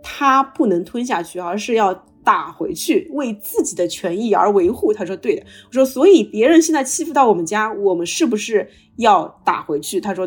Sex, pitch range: female, 200-330 Hz